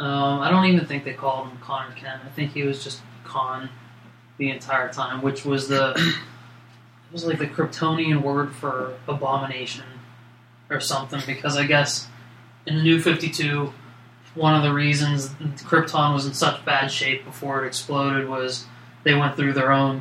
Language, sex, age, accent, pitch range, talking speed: English, male, 20-39, American, 125-155 Hz, 175 wpm